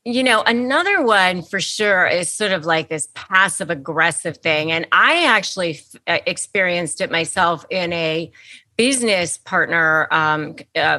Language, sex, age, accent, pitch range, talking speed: English, female, 30-49, American, 160-200 Hz, 140 wpm